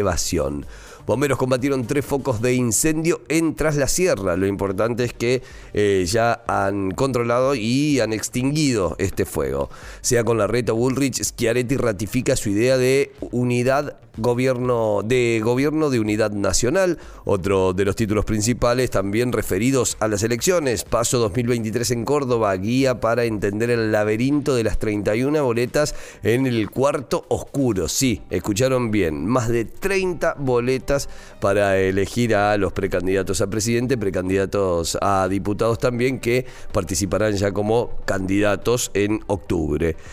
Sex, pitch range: male, 100-125 Hz